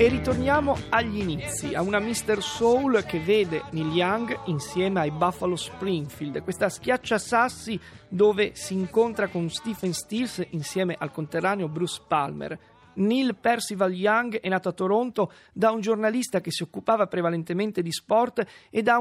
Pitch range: 185-230 Hz